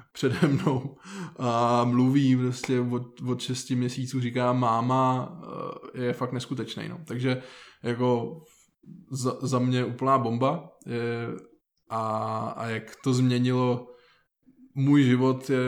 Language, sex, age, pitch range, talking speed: Czech, male, 20-39, 120-130 Hz, 120 wpm